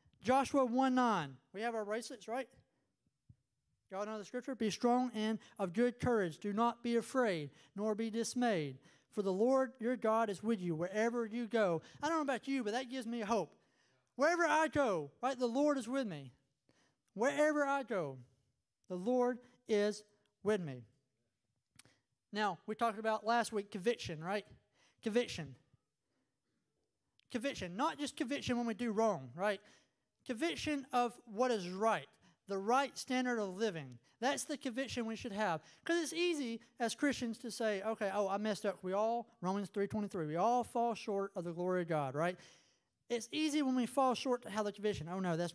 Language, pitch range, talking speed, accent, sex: English, 180-250 Hz, 180 wpm, American, male